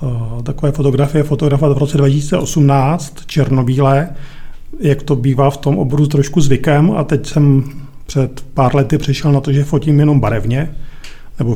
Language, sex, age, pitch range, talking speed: Czech, male, 40-59, 130-145 Hz, 155 wpm